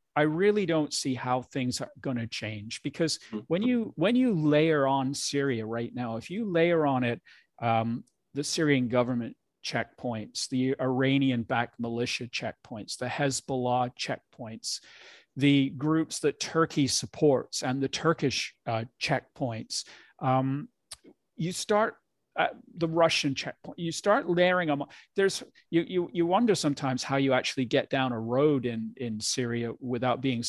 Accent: American